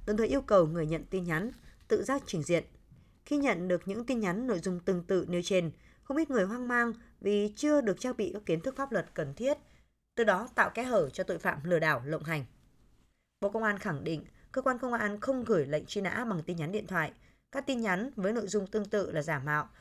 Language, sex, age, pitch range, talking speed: Vietnamese, female, 20-39, 165-230 Hz, 250 wpm